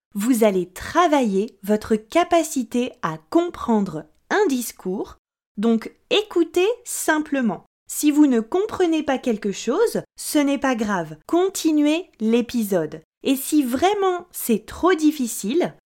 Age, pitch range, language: 20-39, 220-330 Hz, French